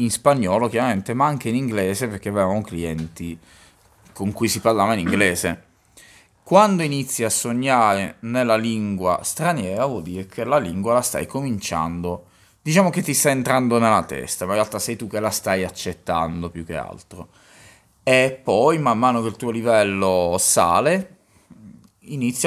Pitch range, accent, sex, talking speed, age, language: 100-125 Hz, native, male, 160 wpm, 20-39, Italian